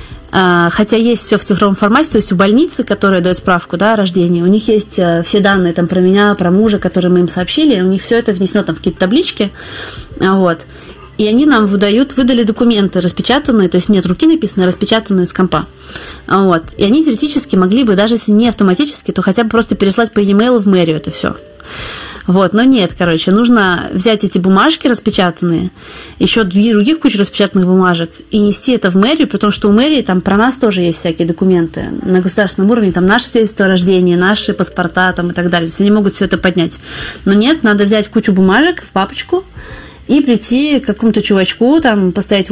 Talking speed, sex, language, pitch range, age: 195 wpm, female, Russian, 185-230 Hz, 20-39